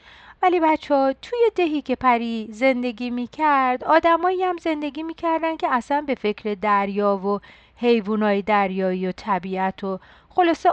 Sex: female